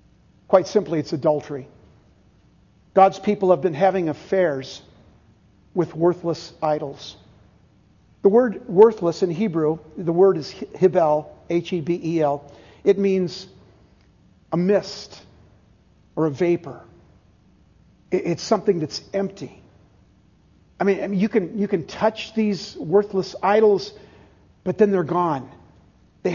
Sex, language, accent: male, English, American